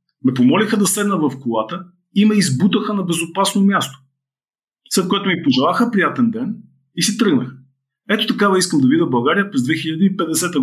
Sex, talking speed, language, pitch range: male, 165 wpm, Bulgarian, 130-185 Hz